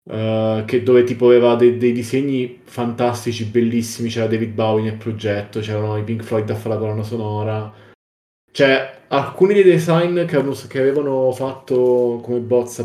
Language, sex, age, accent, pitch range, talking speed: Italian, male, 20-39, native, 115-135 Hz, 145 wpm